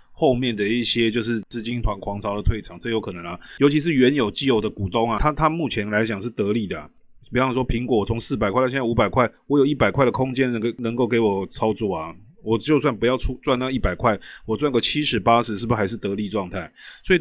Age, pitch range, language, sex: 30-49, 105-135 Hz, Chinese, male